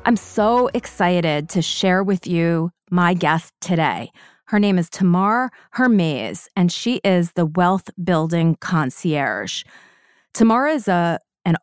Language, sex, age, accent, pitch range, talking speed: English, female, 30-49, American, 170-205 Hz, 130 wpm